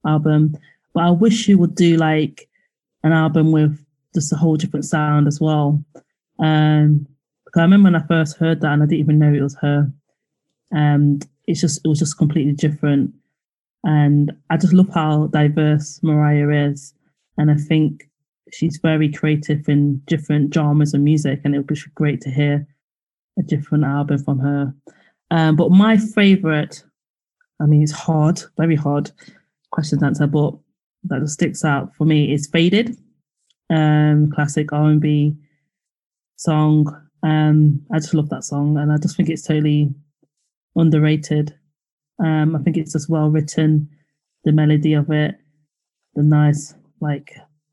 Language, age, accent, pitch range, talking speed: English, 20-39, British, 150-160 Hz, 160 wpm